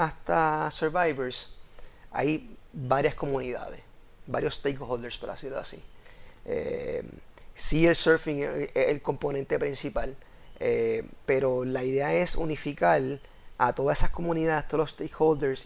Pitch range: 130-160 Hz